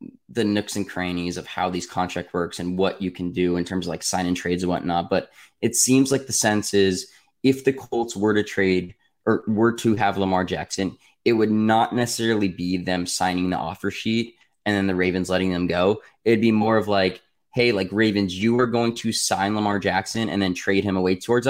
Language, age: English, 20-39